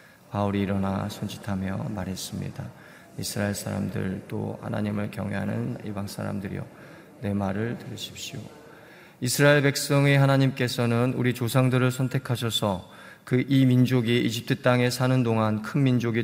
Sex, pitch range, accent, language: male, 105-125 Hz, native, Korean